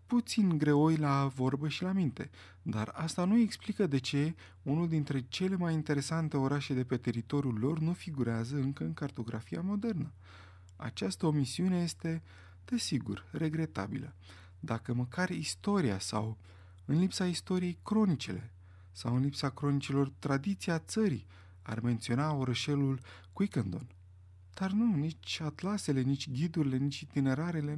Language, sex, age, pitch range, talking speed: Romanian, male, 30-49, 115-180 Hz, 130 wpm